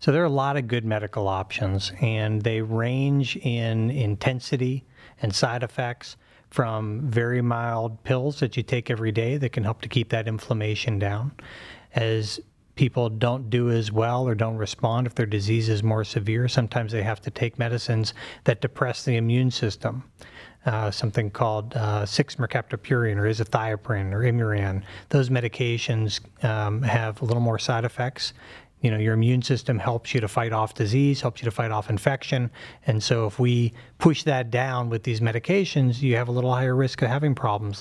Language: English